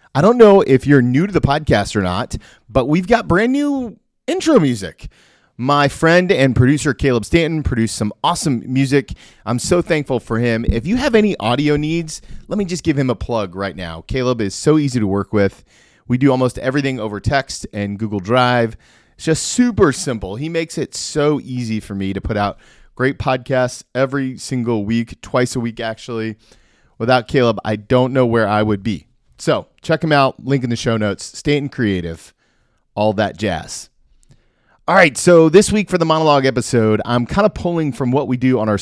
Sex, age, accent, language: male, 30-49, American, English